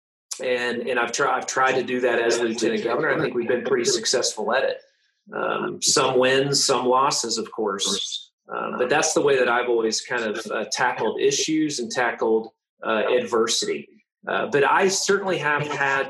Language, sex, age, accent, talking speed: English, male, 30-49, American, 185 wpm